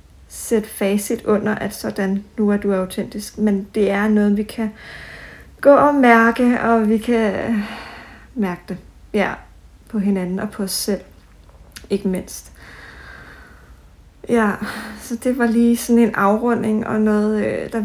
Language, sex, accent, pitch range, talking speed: Danish, female, native, 195-230 Hz, 145 wpm